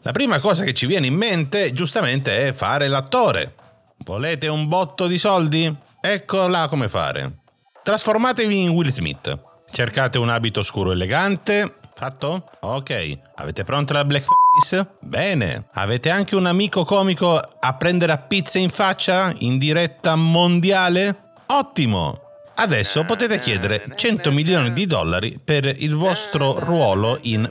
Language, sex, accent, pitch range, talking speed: Italian, male, native, 105-160 Hz, 135 wpm